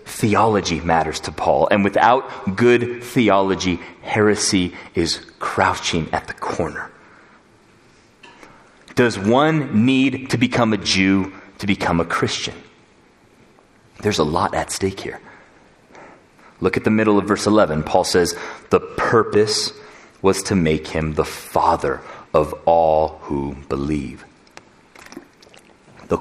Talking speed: 120 wpm